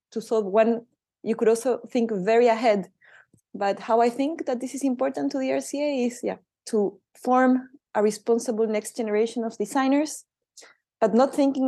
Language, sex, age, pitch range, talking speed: English, female, 20-39, 195-225 Hz, 170 wpm